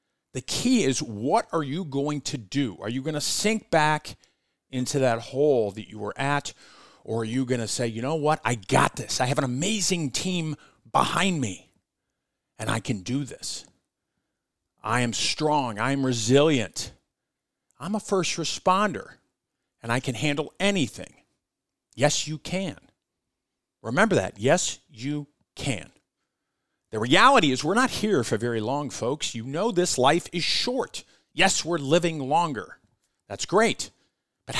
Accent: American